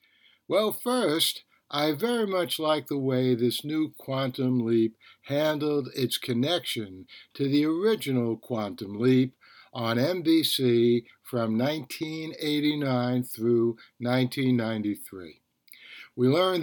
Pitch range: 120-155 Hz